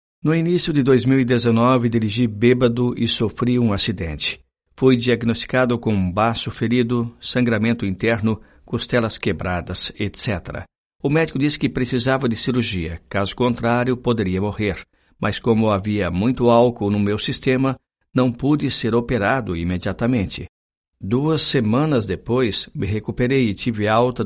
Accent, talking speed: Brazilian, 130 wpm